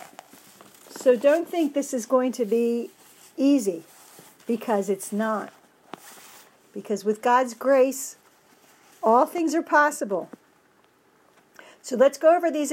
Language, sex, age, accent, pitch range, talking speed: English, female, 50-69, American, 230-285 Hz, 120 wpm